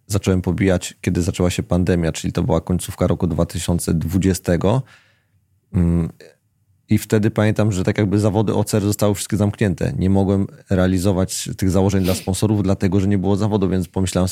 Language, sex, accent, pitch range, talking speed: Polish, male, native, 90-105 Hz, 155 wpm